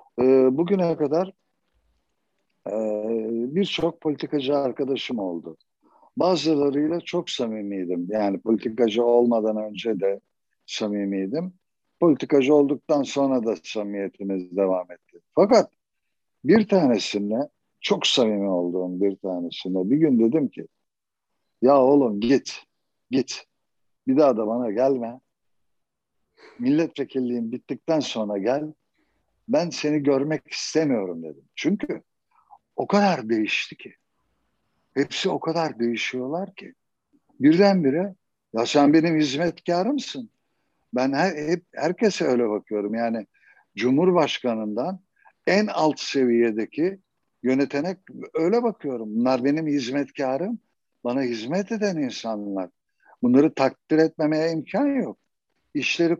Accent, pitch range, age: native, 110-170 Hz, 60-79